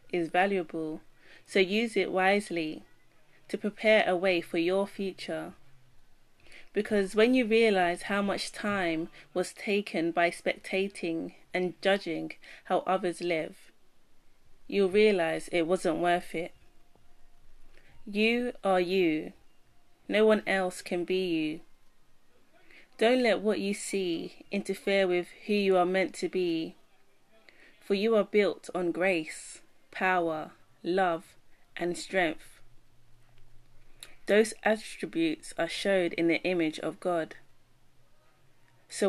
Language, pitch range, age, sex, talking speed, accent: English, 165-200 Hz, 30-49, female, 120 wpm, British